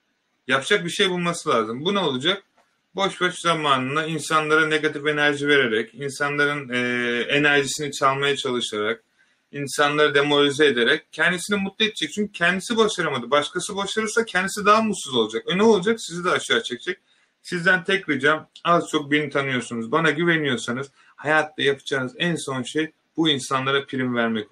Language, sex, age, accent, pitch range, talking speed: Turkish, male, 30-49, native, 130-170 Hz, 145 wpm